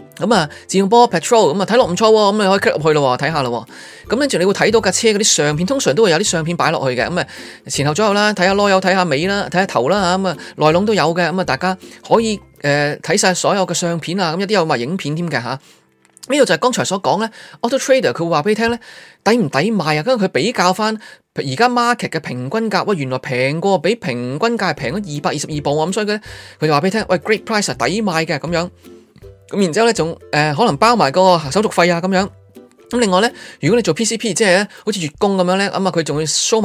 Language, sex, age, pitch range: Chinese, male, 20-39, 150-210 Hz